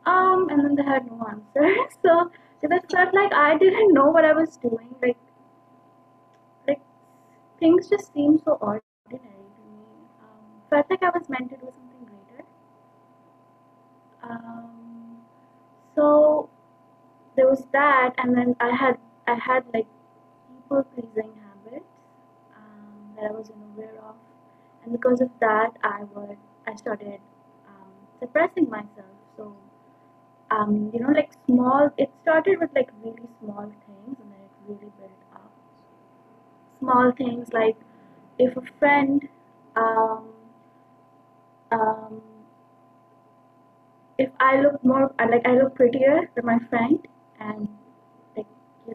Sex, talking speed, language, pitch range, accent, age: female, 140 wpm, English, 220-285 Hz, Indian, 20-39